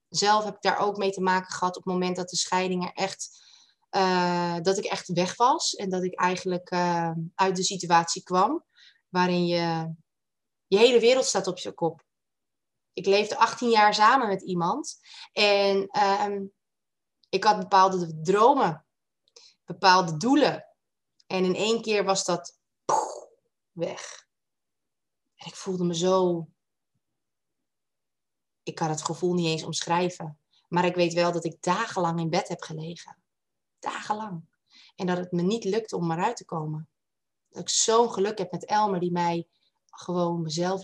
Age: 20-39